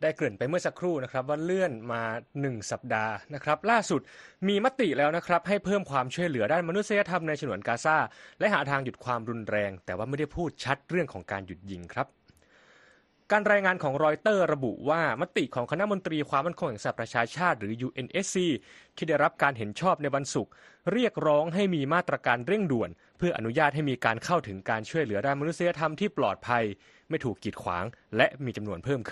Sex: male